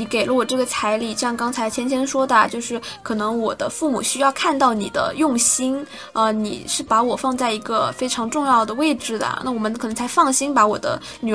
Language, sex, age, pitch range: Chinese, female, 10-29, 210-280 Hz